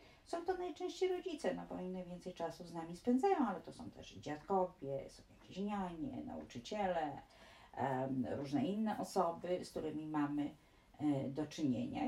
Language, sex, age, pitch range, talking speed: Polish, female, 40-59, 150-220 Hz, 145 wpm